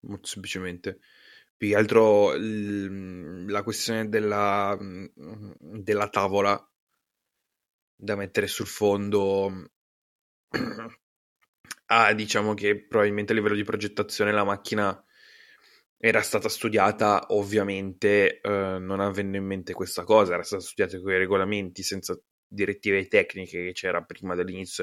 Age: 20-39